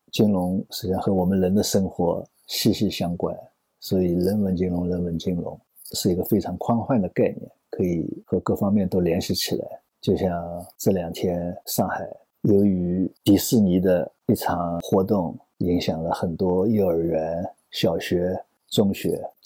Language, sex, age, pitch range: Chinese, male, 50-69, 90-100 Hz